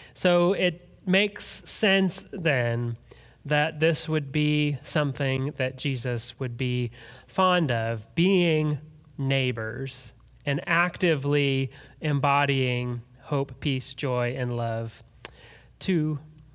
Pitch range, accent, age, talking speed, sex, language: 125-165 Hz, American, 30-49, 100 wpm, male, English